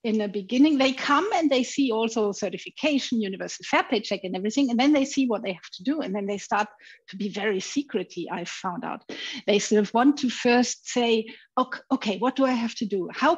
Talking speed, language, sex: 230 wpm, English, female